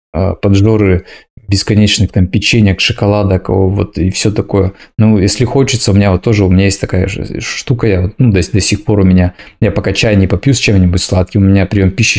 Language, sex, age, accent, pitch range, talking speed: Russian, male, 20-39, native, 95-110 Hz, 205 wpm